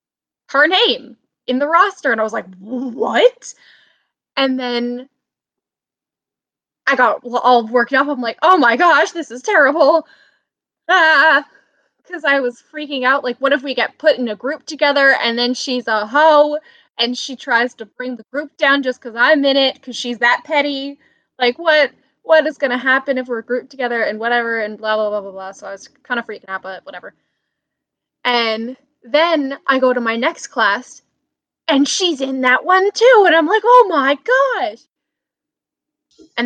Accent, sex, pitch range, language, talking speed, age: American, female, 255-345 Hz, English, 185 wpm, 10-29